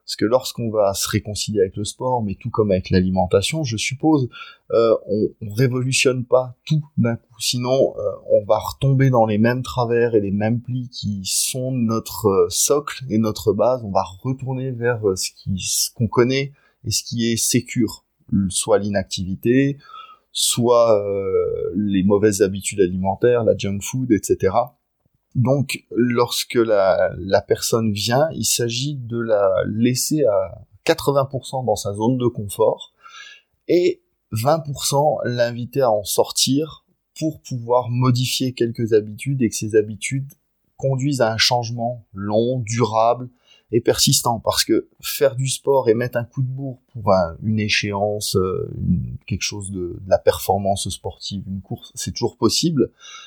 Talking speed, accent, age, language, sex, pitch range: 155 wpm, French, 20-39, French, male, 105-135 Hz